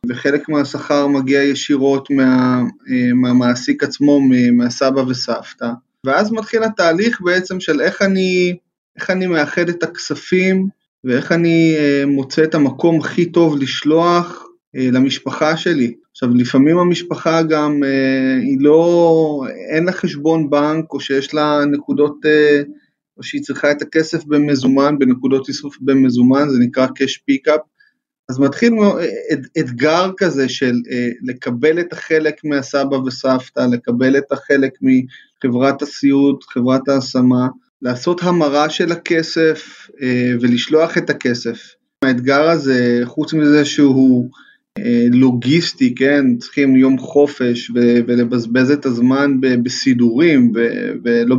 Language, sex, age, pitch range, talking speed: Hebrew, male, 20-39, 130-160 Hz, 125 wpm